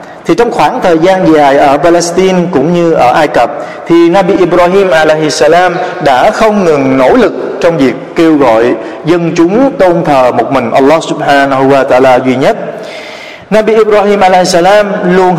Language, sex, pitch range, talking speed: Vietnamese, male, 150-190 Hz, 170 wpm